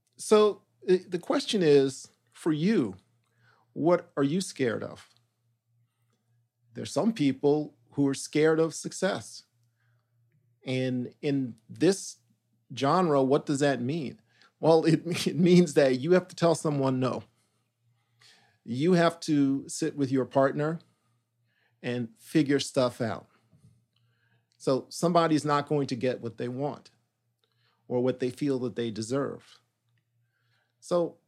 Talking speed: 125 wpm